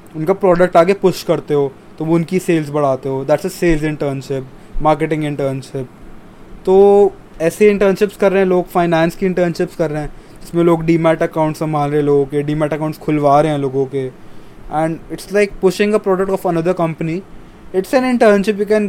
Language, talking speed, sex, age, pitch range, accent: Hindi, 195 wpm, male, 20-39, 150-190 Hz, native